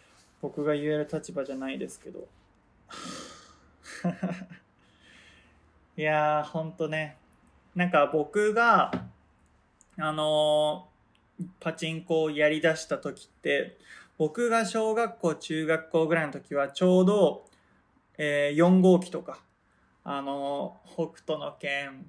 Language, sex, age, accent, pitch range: Japanese, male, 20-39, native, 145-185 Hz